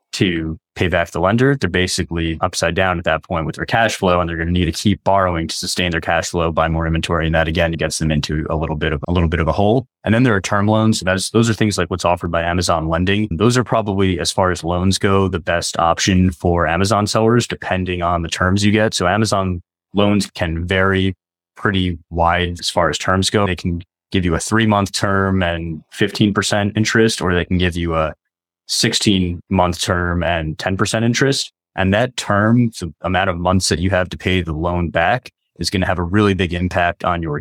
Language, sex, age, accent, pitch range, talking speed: English, male, 20-39, American, 85-100 Hz, 230 wpm